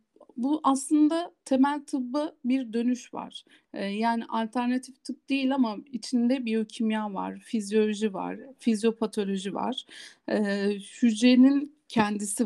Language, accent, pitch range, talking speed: Turkish, native, 210-265 Hz, 110 wpm